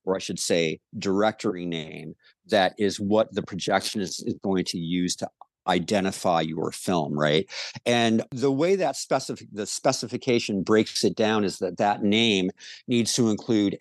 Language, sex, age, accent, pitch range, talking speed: English, male, 50-69, American, 100-140 Hz, 160 wpm